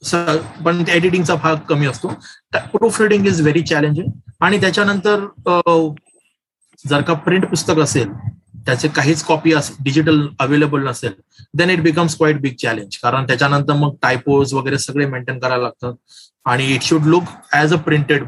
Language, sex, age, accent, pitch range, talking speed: Marathi, male, 30-49, native, 135-165 Hz, 150 wpm